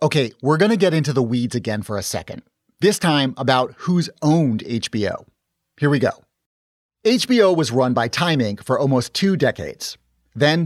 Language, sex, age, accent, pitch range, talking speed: English, male, 30-49, American, 125-170 Hz, 180 wpm